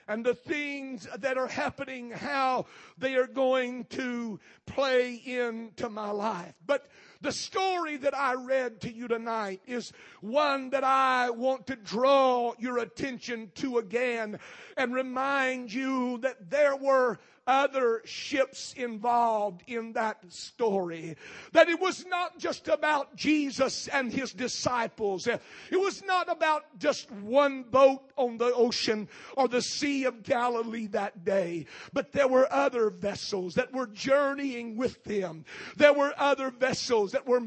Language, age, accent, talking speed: English, 50-69, American, 145 wpm